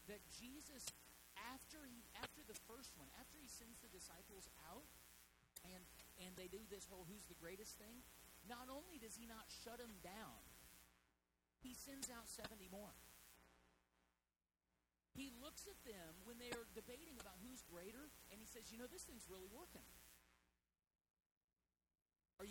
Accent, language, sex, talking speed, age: American, English, male, 155 wpm, 40-59